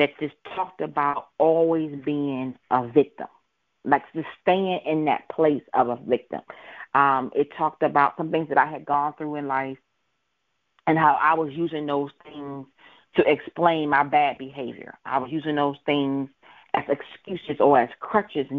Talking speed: 170 wpm